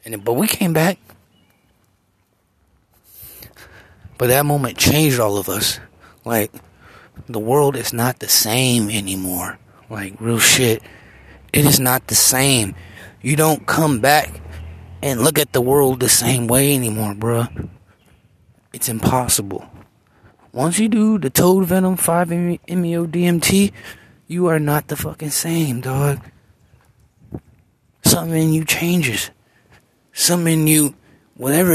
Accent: American